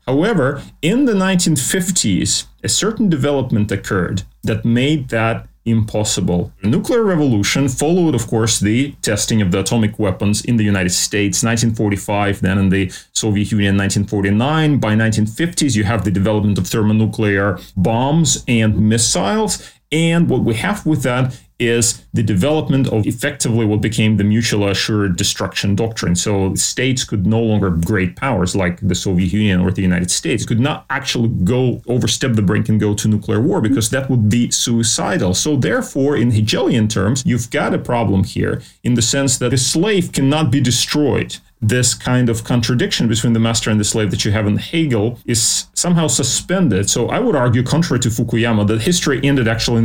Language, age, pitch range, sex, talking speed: English, 30-49, 105-135 Hz, male, 175 wpm